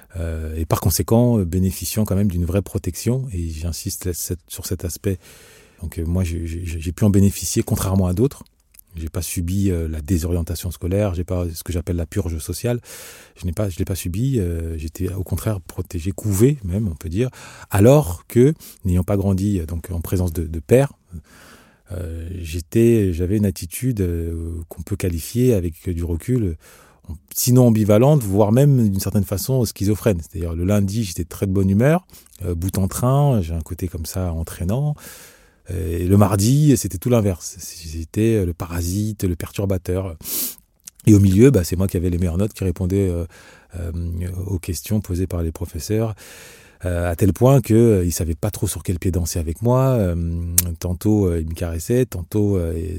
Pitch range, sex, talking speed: 85-105 Hz, male, 175 wpm